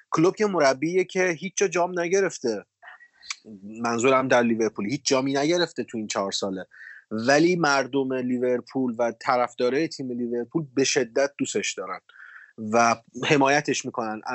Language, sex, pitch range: Persian, male, 120-155 Hz